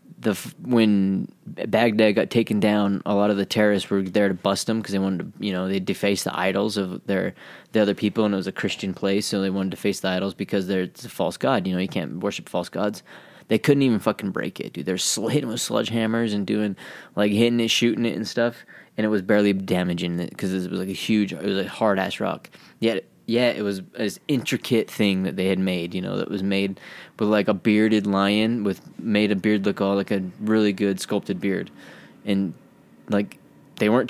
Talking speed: 235 wpm